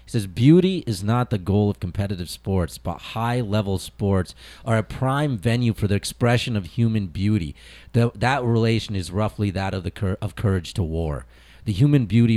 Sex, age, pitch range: male, 40-59, 100-130 Hz